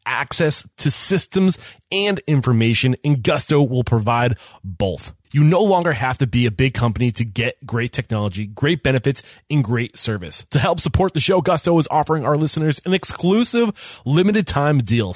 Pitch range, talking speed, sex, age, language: 125-175 Hz, 165 wpm, male, 20-39, English